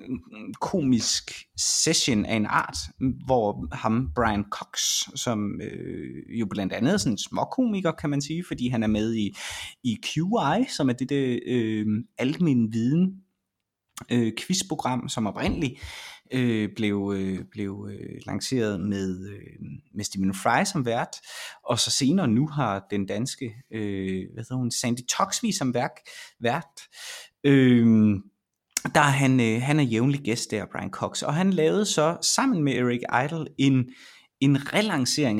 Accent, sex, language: native, male, Danish